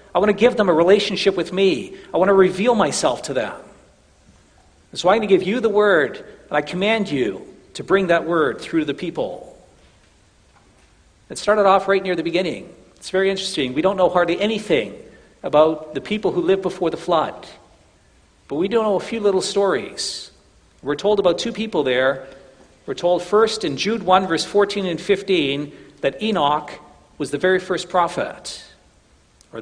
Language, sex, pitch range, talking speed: English, male, 145-195 Hz, 185 wpm